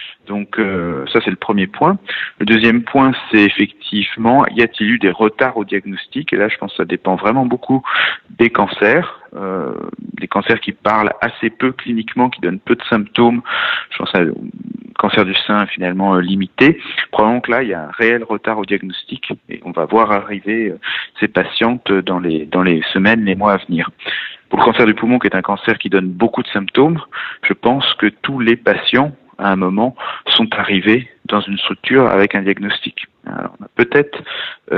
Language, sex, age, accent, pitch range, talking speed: French, male, 40-59, French, 95-115 Hz, 195 wpm